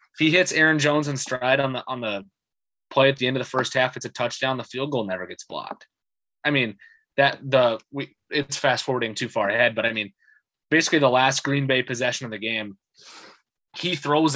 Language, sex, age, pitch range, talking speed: English, male, 20-39, 115-145 Hz, 215 wpm